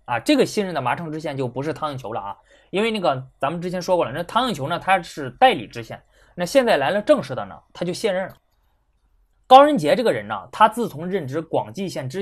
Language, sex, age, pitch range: Chinese, male, 20-39, 145-240 Hz